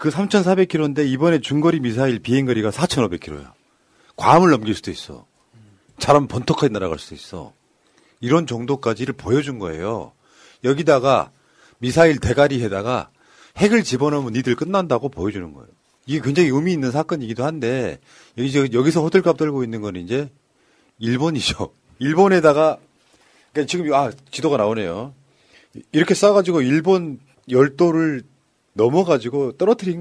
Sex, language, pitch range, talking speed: male, English, 125-175 Hz, 115 wpm